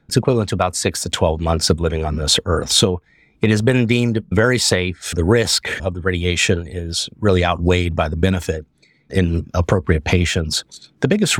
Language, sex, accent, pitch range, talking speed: English, male, American, 90-110 Hz, 190 wpm